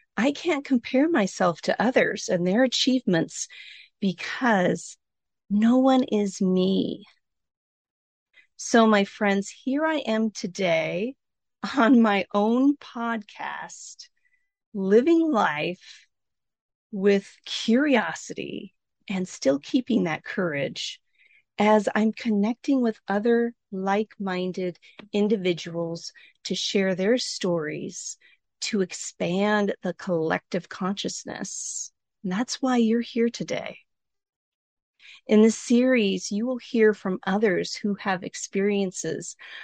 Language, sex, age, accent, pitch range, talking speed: English, female, 40-59, American, 190-240 Hz, 100 wpm